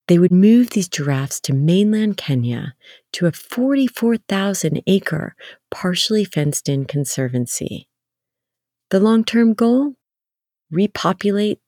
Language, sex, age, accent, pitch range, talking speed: English, female, 40-59, American, 130-175 Hz, 90 wpm